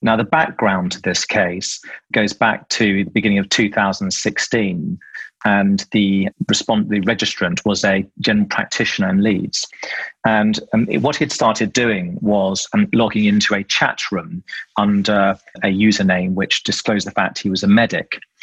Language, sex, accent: English, male, British